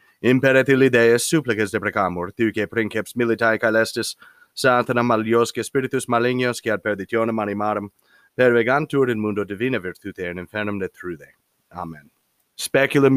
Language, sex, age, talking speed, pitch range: English, male, 30-49, 125 wpm, 100-135 Hz